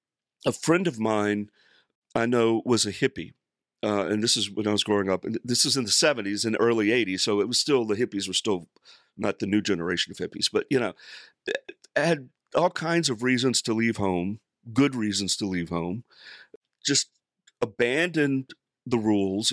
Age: 50-69